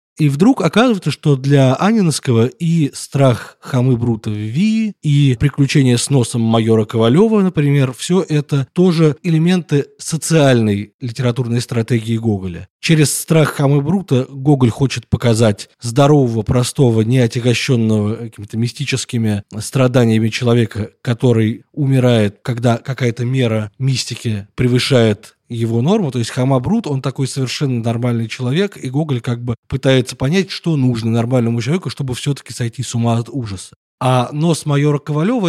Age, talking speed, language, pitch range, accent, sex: 20-39, 135 wpm, Russian, 120-145 Hz, native, male